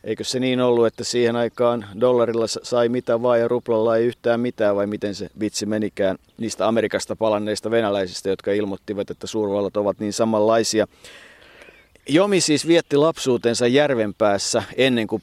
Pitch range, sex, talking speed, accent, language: 105-120 Hz, male, 155 wpm, native, Finnish